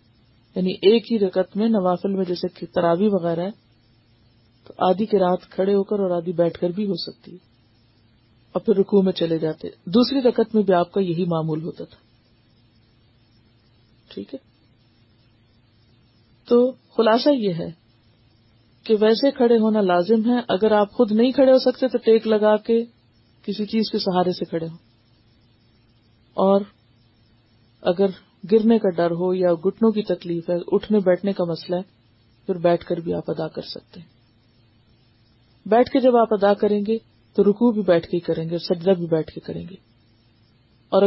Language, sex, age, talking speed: Urdu, female, 50-69, 175 wpm